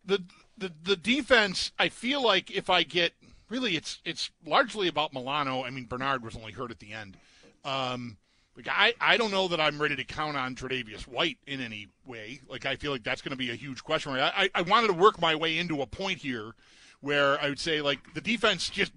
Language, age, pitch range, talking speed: English, 40-59, 135-185 Hz, 235 wpm